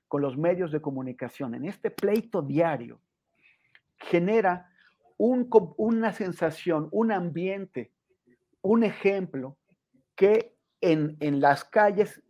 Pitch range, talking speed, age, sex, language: 140-185 Hz, 105 wpm, 50-69, male, Spanish